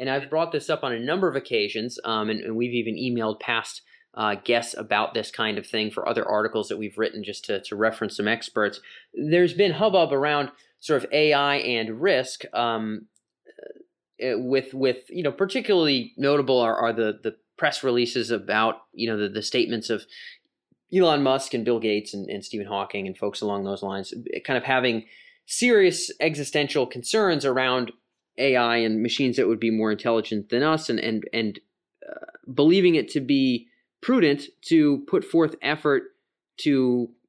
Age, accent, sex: 30-49, American, male